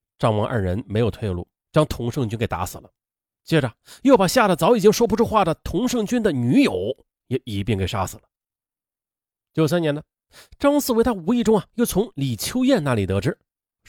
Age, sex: 30-49, male